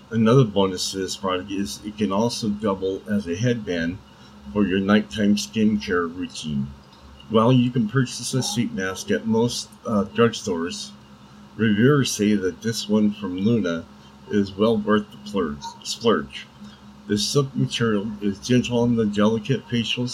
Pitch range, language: 95-115 Hz, English